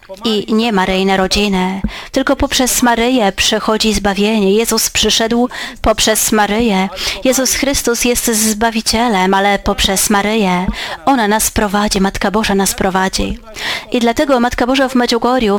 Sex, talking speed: female, 125 wpm